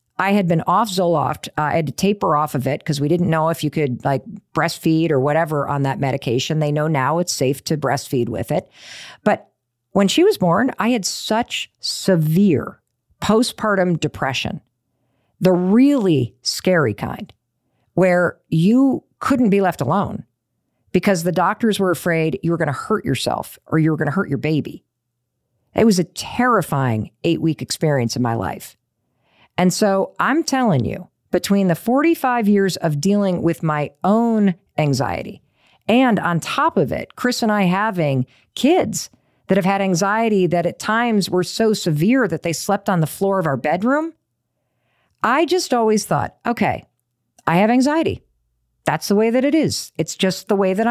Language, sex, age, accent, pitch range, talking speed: English, female, 50-69, American, 135-210 Hz, 175 wpm